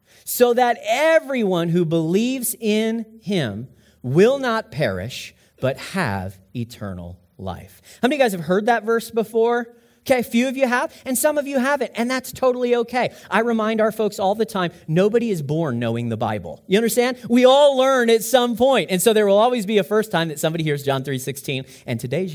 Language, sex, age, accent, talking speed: English, male, 40-59, American, 205 wpm